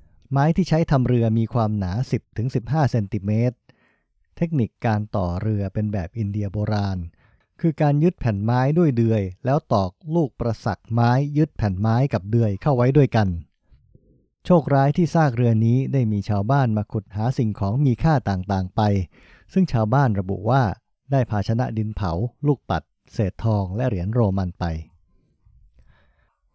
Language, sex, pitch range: English, male, 100-135 Hz